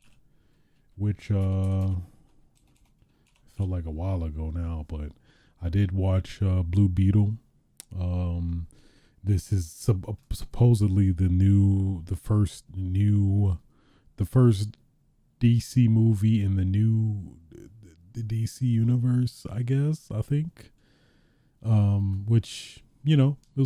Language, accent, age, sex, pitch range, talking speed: English, American, 30-49, male, 90-115 Hz, 115 wpm